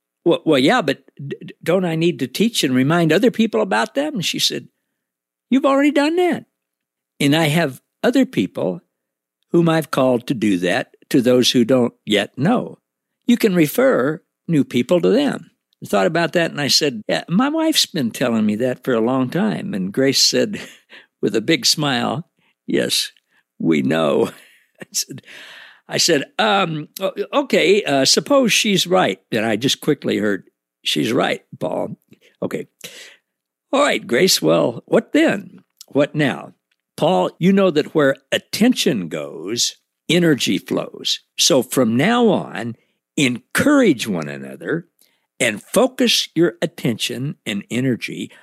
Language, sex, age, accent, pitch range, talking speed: English, male, 60-79, American, 130-220 Hz, 150 wpm